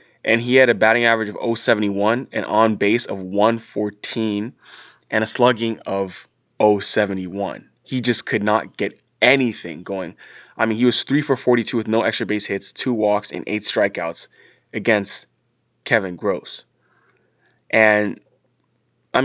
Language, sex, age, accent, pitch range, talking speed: English, male, 20-39, American, 105-120 Hz, 145 wpm